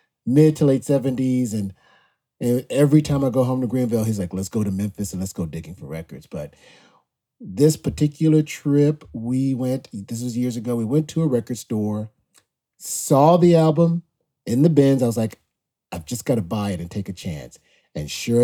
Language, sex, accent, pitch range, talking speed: English, male, American, 100-130 Hz, 200 wpm